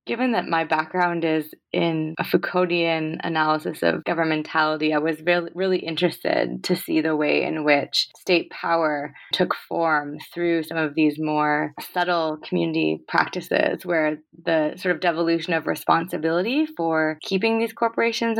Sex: female